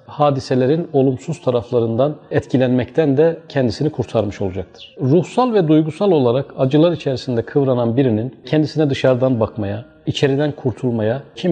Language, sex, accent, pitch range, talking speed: Turkish, male, native, 125-160 Hz, 115 wpm